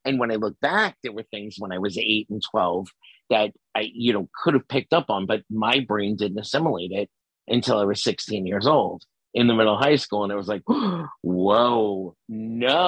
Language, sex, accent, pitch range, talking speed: English, male, American, 105-135 Hz, 220 wpm